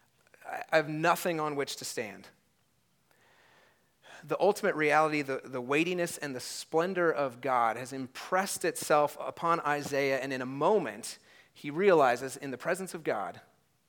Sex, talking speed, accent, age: male, 145 wpm, American, 30-49